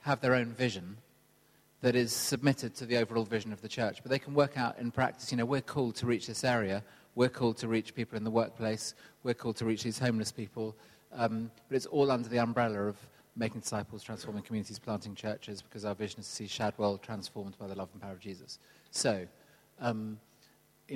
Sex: male